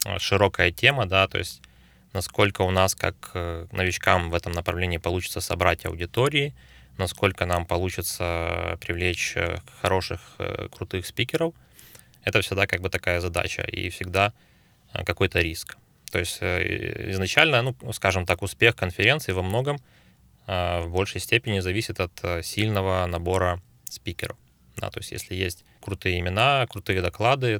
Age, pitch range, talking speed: 20-39, 90-105 Hz, 130 wpm